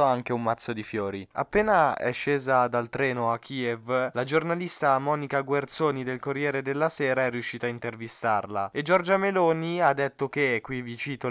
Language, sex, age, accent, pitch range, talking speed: Italian, male, 20-39, native, 115-140 Hz, 175 wpm